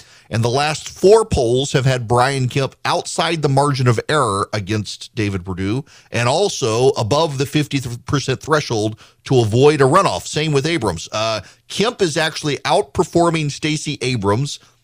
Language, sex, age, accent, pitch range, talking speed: English, male, 40-59, American, 110-145 Hz, 150 wpm